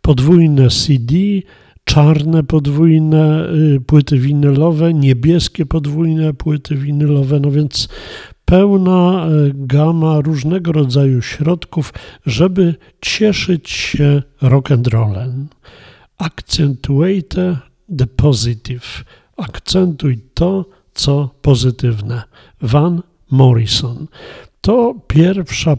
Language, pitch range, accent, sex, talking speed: Polish, 130-165 Hz, native, male, 75 wpm